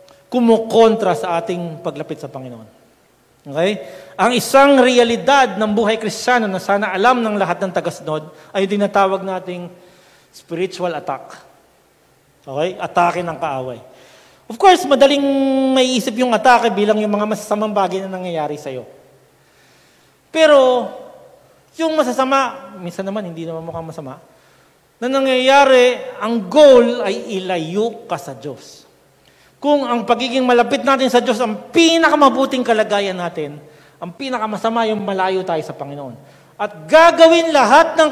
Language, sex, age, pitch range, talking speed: English, male, 40-59, 180-260 Hz, 130 wpm